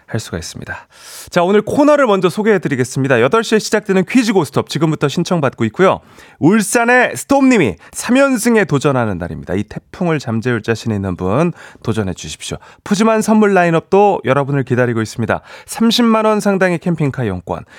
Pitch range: 125-200 Hz